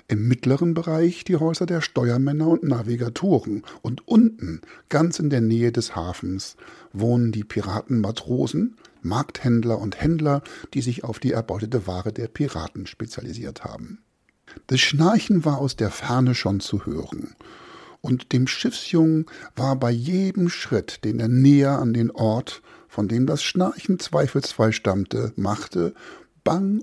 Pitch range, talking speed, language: 115-160 Hz, 140 wpm, German